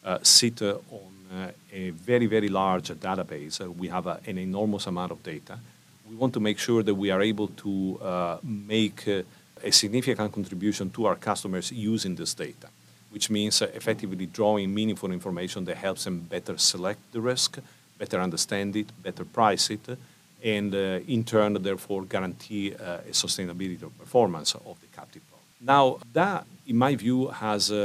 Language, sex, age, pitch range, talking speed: English, male, 40-59, 95-115 Hz, 175 wpm